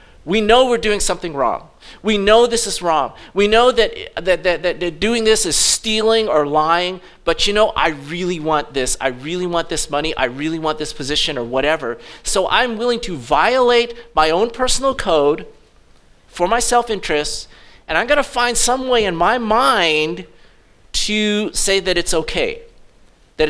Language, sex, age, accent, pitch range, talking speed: English, male, 40-59, American, 150-210 Hz, 175 wpm